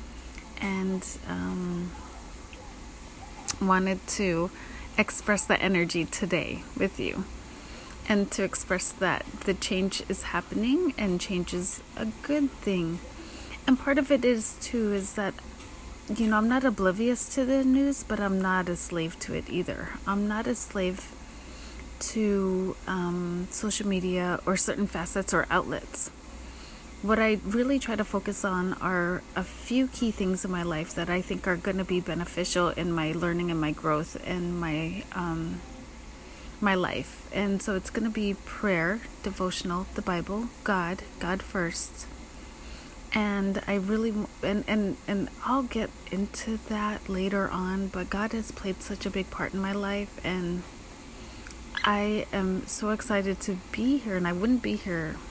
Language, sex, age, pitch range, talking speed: English, female, 30-49, 180-215 Hz, 155 wpm